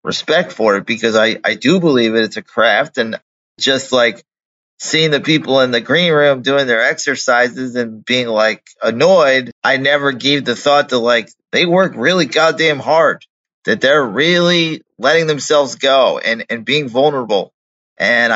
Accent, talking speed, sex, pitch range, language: American, 170 wpm, male, 120-145 Hz, English